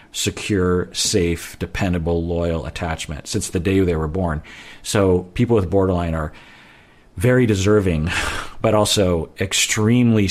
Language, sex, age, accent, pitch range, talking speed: English, male, 40-59, American, 85-105 Hz, 120 wpm